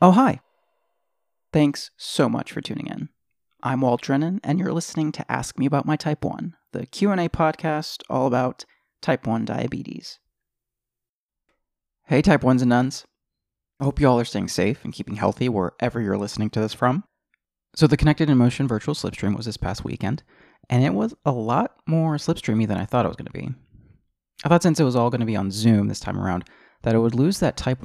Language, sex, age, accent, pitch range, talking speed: English, male, 30-49, American, 105-145 Hz, 205 wpm